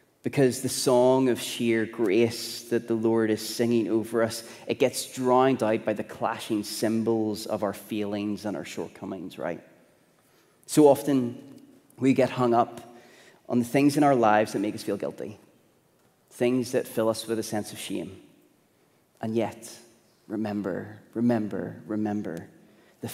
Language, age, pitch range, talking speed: English, 30-49, 105-120 Hz, 155 wpm